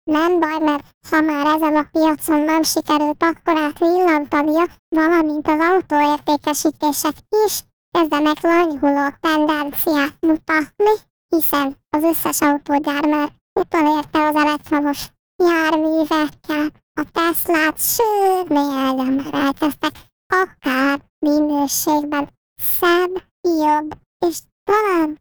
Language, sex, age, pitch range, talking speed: Hungarian, male, 10-29, 295-335 Hz, 100 wpm